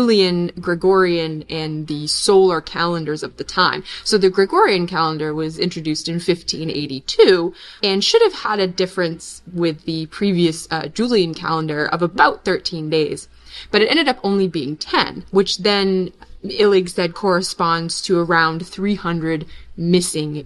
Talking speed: 145 wpm